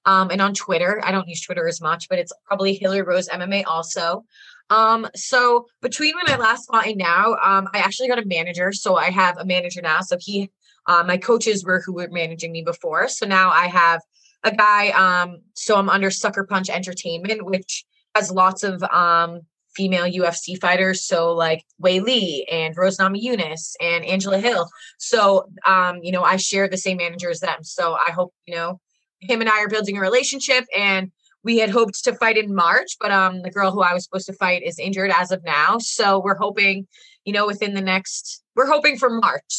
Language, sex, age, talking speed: English, female, 20-39, 210 wpm